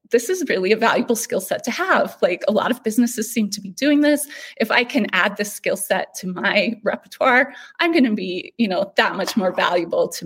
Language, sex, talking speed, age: English, female, 235 wpm, 20-39